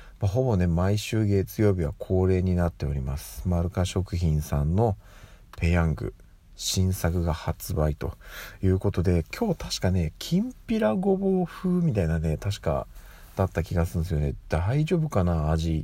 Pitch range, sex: 80-105 Hz, male